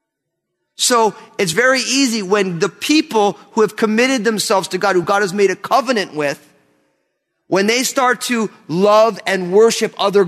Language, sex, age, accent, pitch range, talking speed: English, male, 30-49, American, 175-220 Hz, 165 wpm